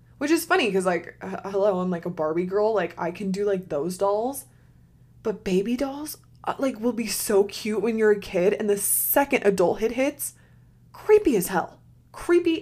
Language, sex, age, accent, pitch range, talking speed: English, female, 20-39, American, 170-225 Hz, 190 wpm